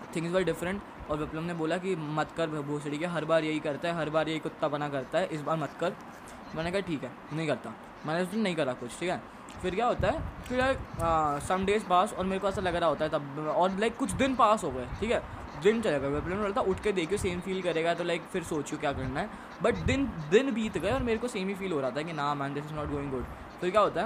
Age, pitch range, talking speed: 10-29, 145-180 Hz, 275 wpm